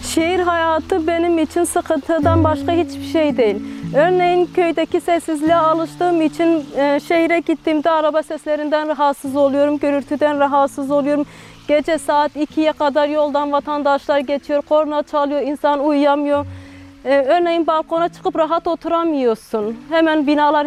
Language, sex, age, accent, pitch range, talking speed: Turkish, female, 30-49, native, 255-315 Hz, 125 wpm